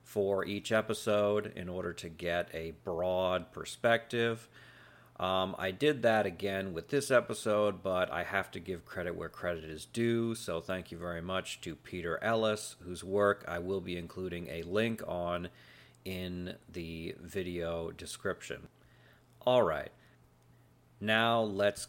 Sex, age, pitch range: male, 40-59, 85-110 Hz